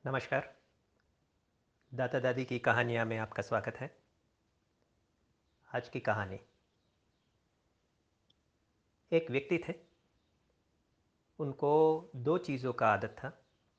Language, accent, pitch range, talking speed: Hindi, native, 110-125 Hz, 90 wpm